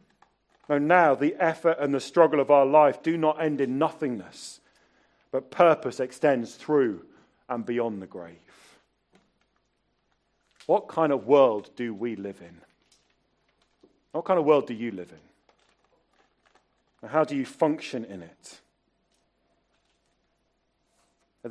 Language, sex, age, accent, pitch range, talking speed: English, male, 40-59, British, 135-200 Hz, 130 wpm